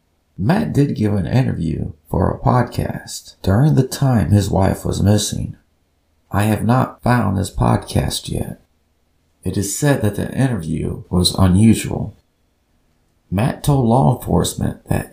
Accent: American